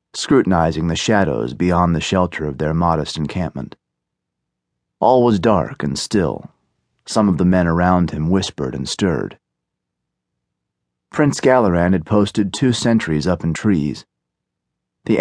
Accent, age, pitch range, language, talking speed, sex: American, 30-49, 80-105 Hz, English, 135 wpm, male